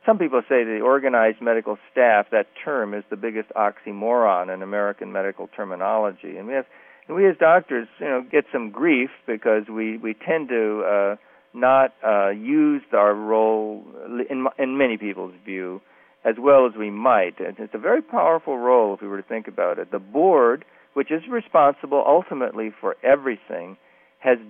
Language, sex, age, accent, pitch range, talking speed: English, male, 50-69, American, 105-135 Hz, 180 wpm